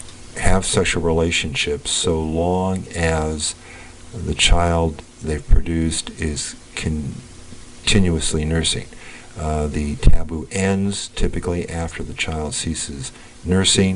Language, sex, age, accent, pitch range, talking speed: English, male, 50-69, American, 80-90 Hz, 110 wpm